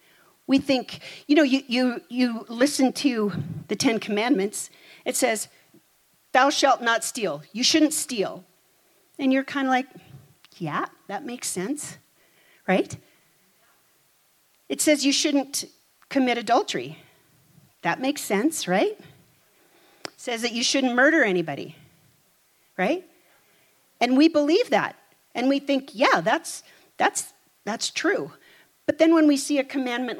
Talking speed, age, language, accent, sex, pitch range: 135 wpm, 40-59, English, American, female, 185-275 Hz